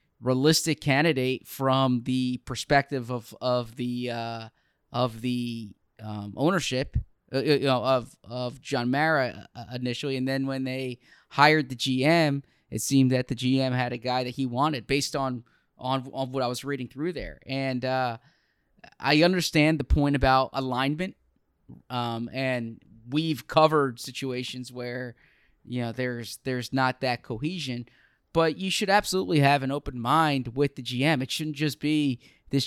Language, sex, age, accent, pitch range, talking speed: English, male, 20-39, American, 125-145 Hz, 160 wpm